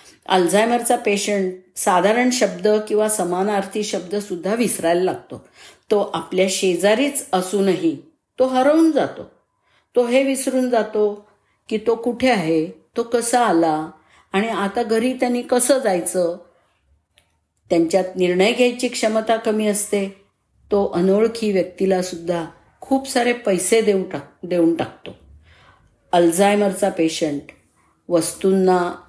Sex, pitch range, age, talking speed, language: female, 160-220 Hz, 50-69, 105 wpm, Marathi